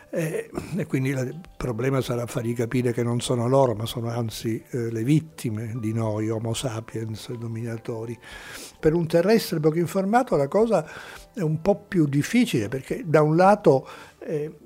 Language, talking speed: Italian, 155 wpm